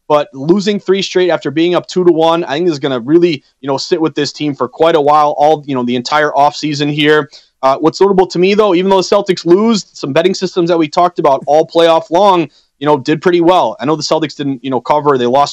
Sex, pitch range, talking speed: male, 150-175 Hz, 265 wpm